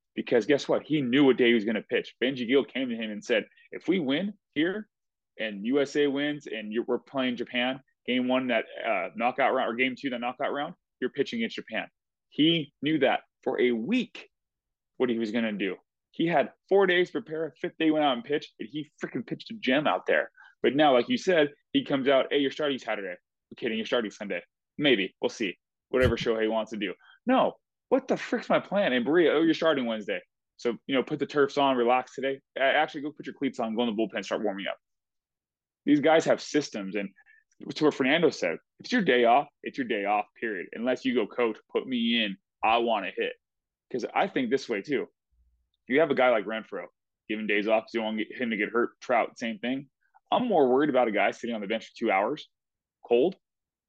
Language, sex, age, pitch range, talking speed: English, male, 20-39, 115-155 Hz, 225 wpm